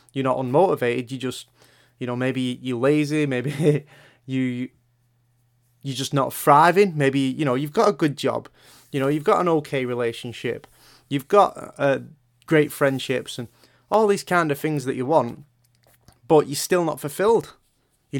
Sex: male